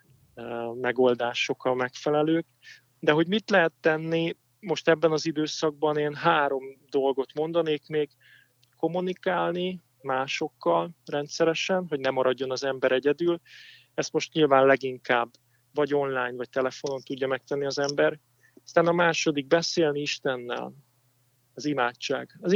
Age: 30-49